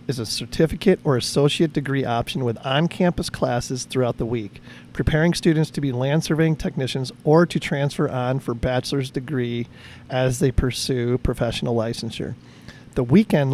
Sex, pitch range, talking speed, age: male, 125-160 Hz, 150 wpm, 40-59